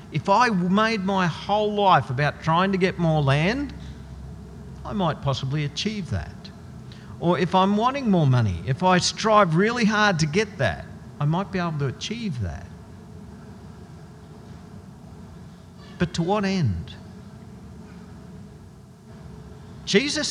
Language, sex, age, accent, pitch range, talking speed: English, male, 50-69, Australian, 125-185 Hz, 125 wpm